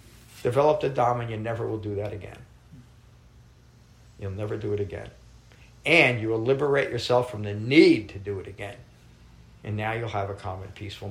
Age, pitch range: 50-69, 105-140 Hz